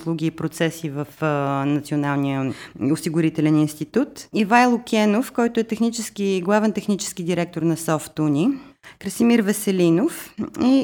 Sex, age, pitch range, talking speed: female, 30-49, 170-235 Hz, 110 wpm